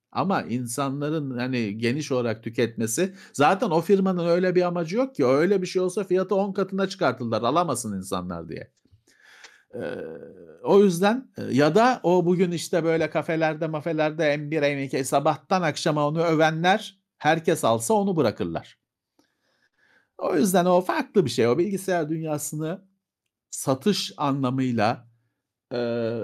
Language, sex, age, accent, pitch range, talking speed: Turkish, male, 50-69, native, 130-180 Hz, 135 wpm